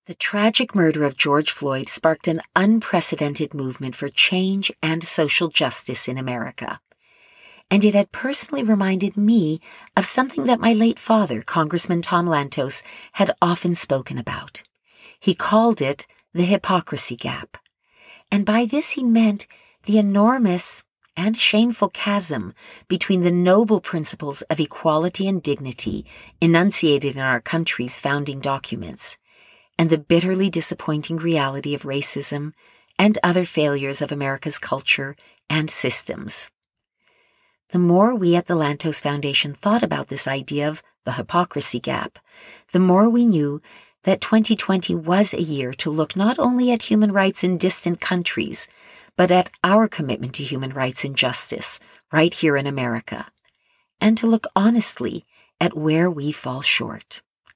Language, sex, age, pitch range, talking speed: English, female, 50-69, 145-205 Hz, 145 wpm